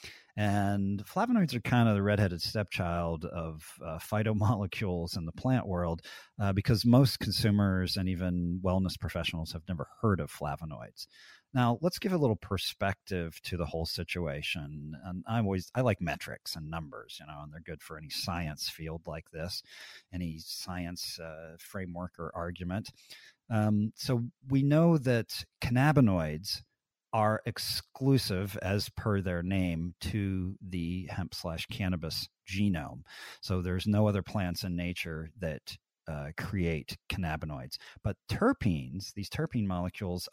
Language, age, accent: English, 40-59, American